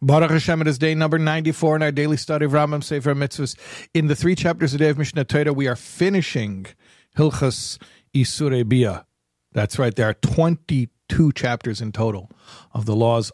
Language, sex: English, male